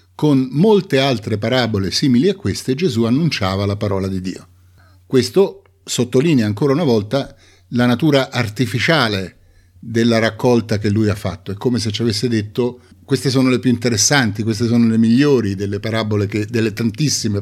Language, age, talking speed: Italian, 50-69, 160 wpm